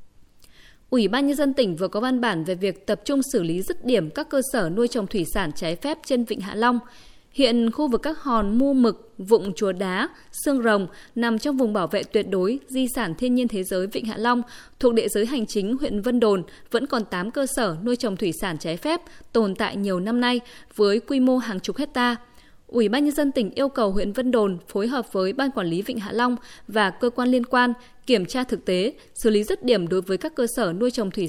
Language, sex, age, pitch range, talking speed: Vietnamese, female, 20-39, 205-255 Hz, 245 wpm